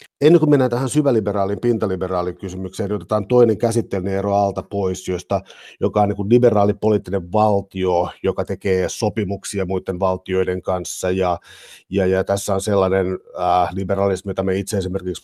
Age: 50-69